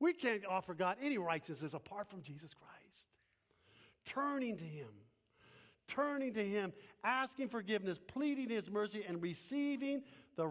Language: English